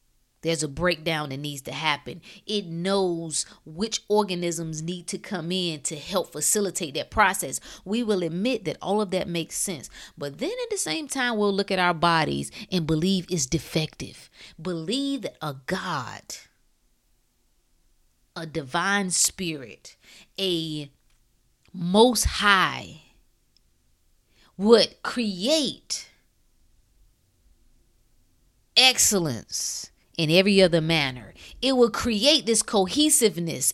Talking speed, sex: 115 wpm, female